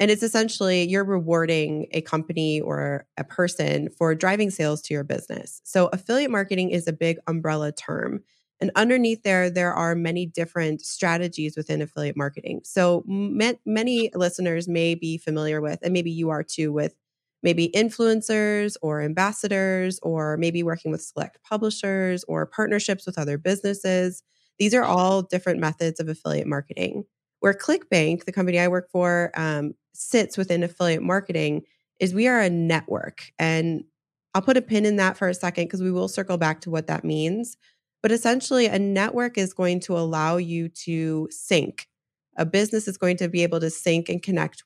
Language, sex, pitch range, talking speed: English, female, 160-200 Hz, 175 wpm